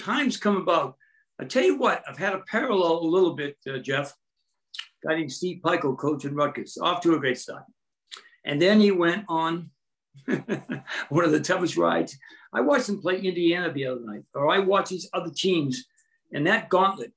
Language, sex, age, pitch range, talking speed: English, male, 60-79, 145-195 Hz, 190 wpm